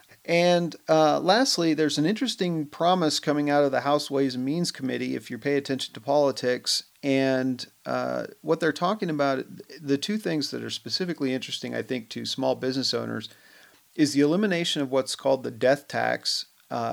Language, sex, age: English, male, 40-59